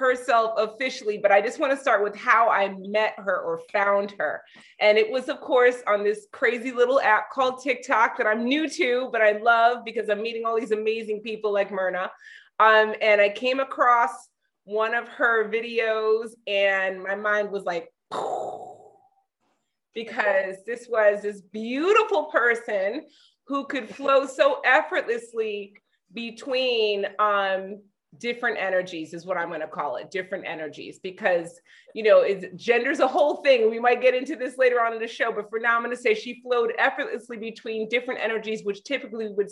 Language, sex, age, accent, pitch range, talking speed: English, female, 30-49, American, 190-245 Hz, 180 wpm